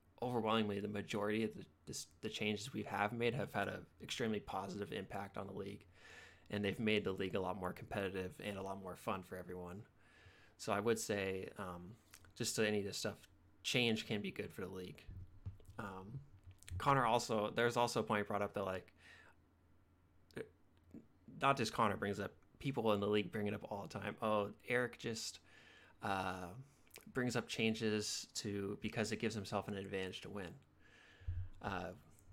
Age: 20-39